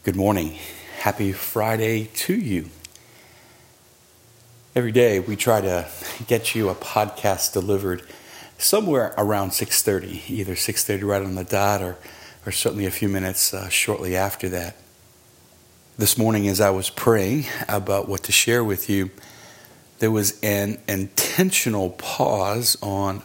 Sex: male